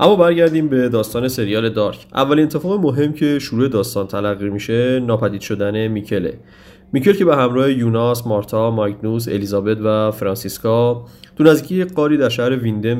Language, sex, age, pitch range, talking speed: Persian, male, 30-49, 105-130 Hz, 150 wpm